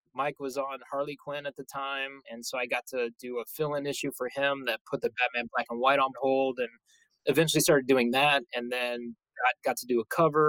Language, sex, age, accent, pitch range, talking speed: English, male, 20-39, American, 115-140 Hz, 235 wpm